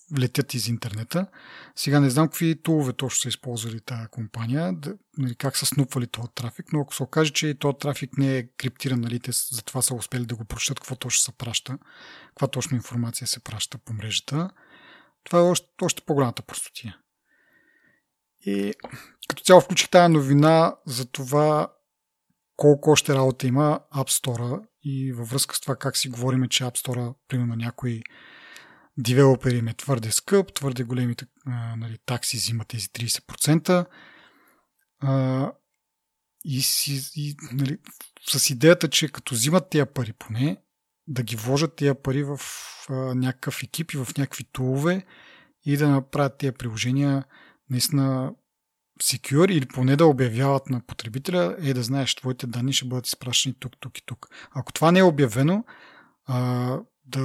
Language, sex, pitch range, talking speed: Bulgarian, male, 125-150 Hz, 160 wpm